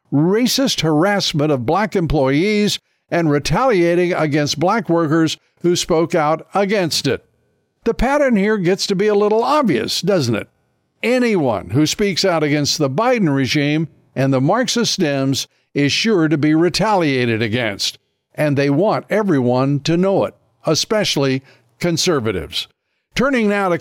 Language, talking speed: English, 140 wpm